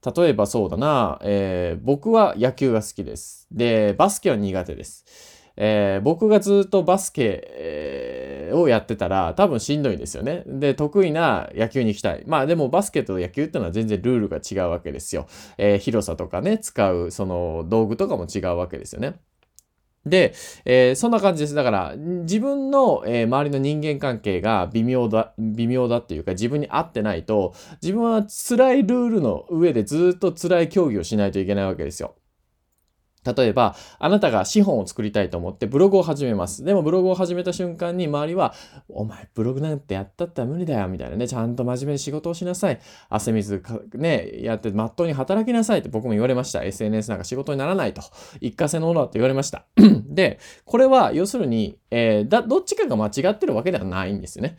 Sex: male